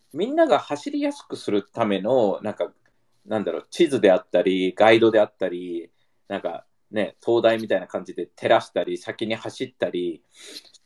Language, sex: Japanese, male